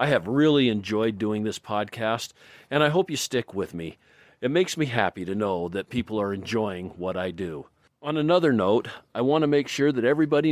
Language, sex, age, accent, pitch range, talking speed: English, male, 50-69, American, 110-140 Hz, 210 wpm